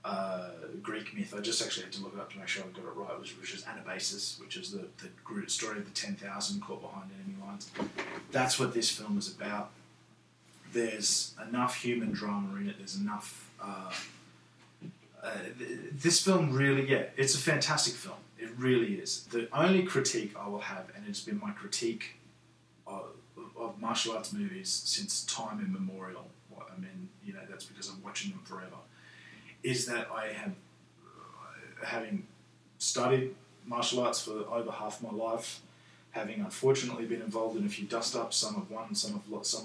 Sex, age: male, 20-39